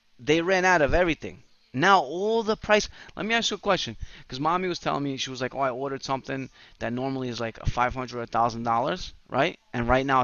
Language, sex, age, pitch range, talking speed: English, male, 30-49, 125-170 Hz, 240 wpm